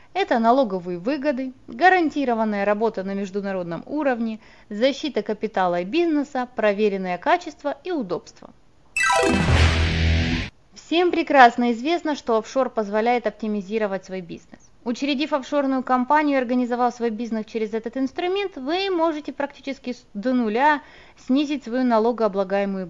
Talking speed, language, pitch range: 115 wpm, Russian, 215-290 Hz